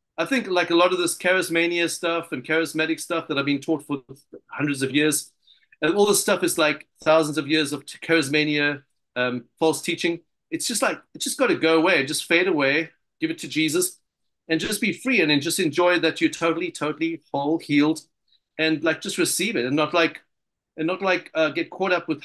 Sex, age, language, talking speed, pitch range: male, 40-59, English, 215 wpm, 155-185 Hz